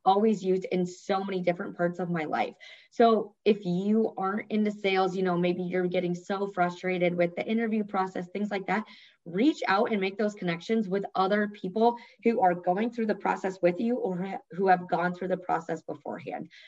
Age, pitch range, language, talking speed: 20-39, 180-215 Hz, English, 200 wpm